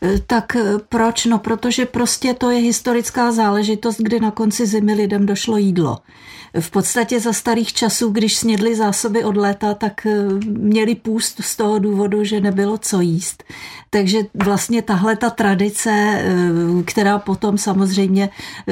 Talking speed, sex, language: 140 wpm, female, Czech